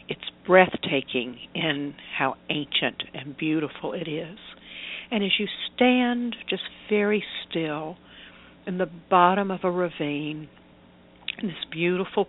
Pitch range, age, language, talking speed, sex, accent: 150-190 Hz, 60-79, English, 120 wpm, female, American